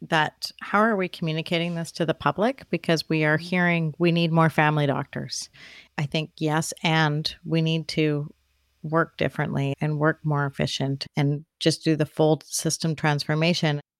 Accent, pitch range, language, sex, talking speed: American, 150-175 Hz, English, female, 165 wpm